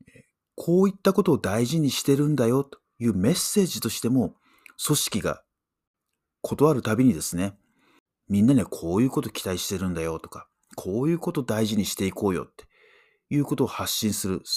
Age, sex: 40-59, male